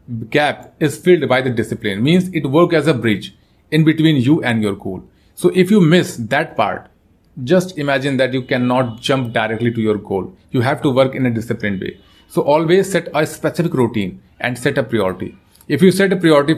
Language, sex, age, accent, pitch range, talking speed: Hindi, male, 30-49, native, 120-150 Hz, 205 wpm